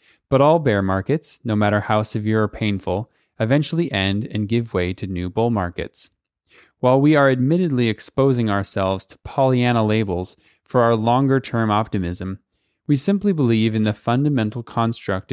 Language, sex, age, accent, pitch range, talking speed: English, male, 20-39, American, 105-135 Hz, 155 wpm